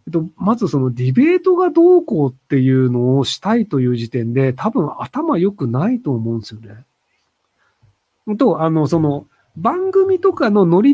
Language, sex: Japanese, male